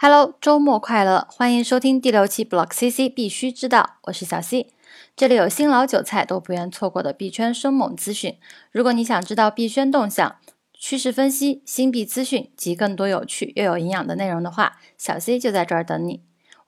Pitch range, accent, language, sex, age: 185-250 Hz, native, Chinese, female, 10-29